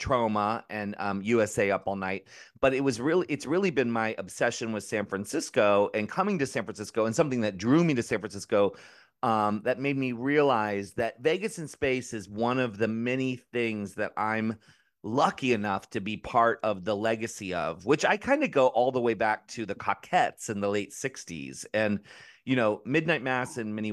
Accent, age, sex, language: American, 30-49, male, English